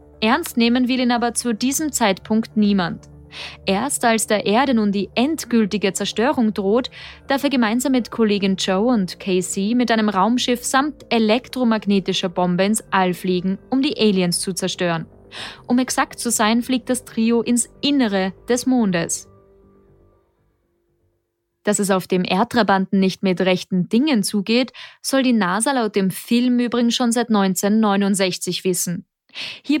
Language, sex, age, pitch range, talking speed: German, female, 20-39, 190-240 Hz, 145 wpm